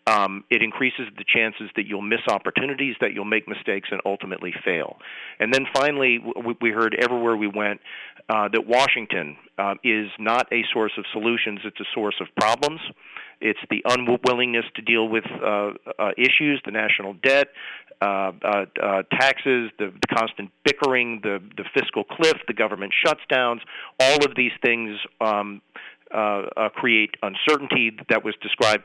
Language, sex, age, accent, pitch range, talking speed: English, male, 40-59, American, 100-125 Hz, 160 wpm